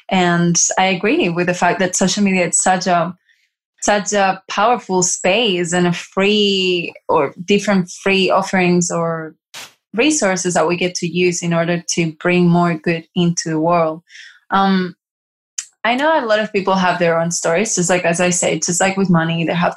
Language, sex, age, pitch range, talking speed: English, female, 20-39, 175-195 Hz, 185 wpm